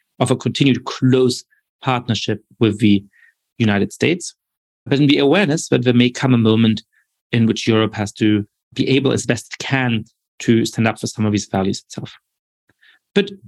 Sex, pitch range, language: male, 115-150 Hz, English